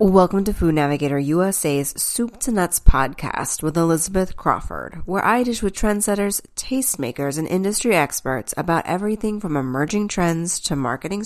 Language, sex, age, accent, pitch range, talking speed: English, female, 30-49, American, 145-205 Hz, 150 wpm